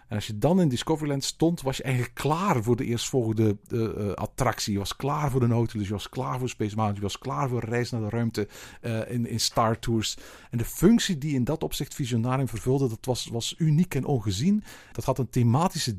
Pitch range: 110-145 Hz